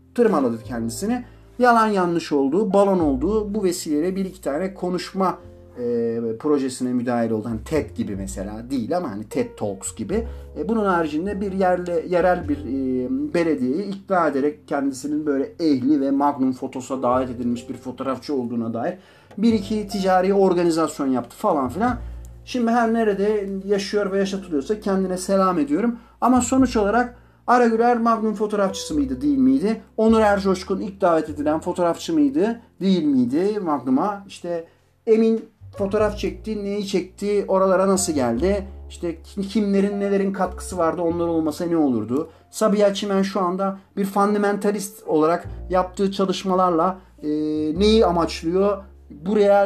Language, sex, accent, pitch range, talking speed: Turkish, male, native, 150-210 Hz, 140 wpm